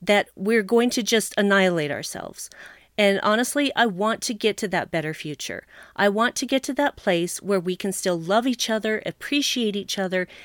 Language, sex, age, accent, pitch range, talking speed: English, female, 40-59, American, 205-280 Hz, 195 wpm